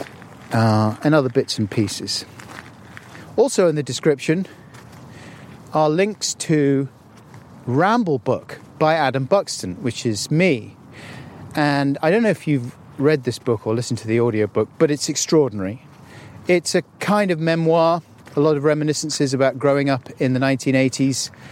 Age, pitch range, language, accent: 40-59, 120-145 Hz, English, British